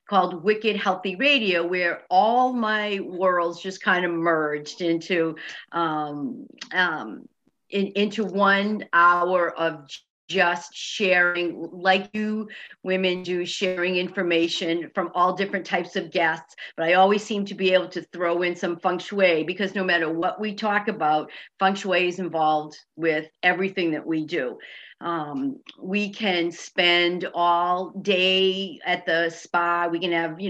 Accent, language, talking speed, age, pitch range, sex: American, English, 145 wpm, 50-69, 170-205 Hz, female